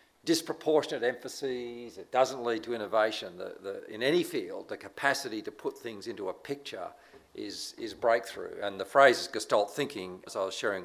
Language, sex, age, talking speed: English, male, 50-69, 175 wpm